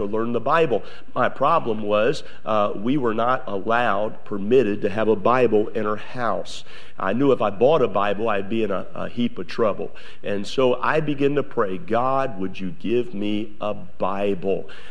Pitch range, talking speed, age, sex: 110-140 Hz, 190 wpm, 50-69, male